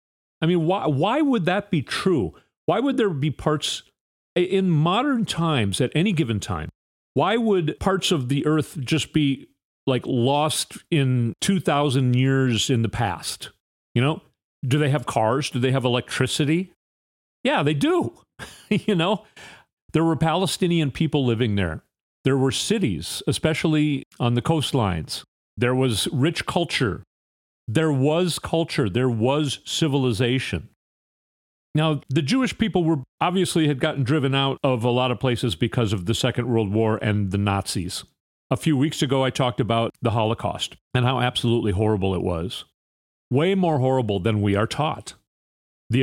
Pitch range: 110-155 Hz